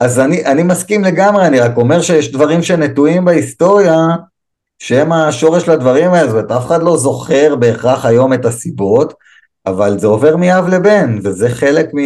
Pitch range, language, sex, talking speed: 105-150 Hz, Hebrew, male, 155 wpm